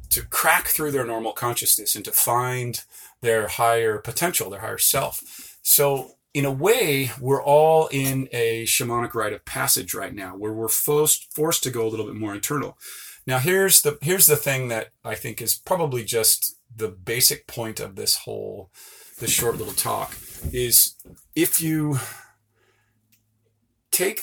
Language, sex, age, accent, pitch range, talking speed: English, male, 30-49, American, 115-140 Hz, 165 wpm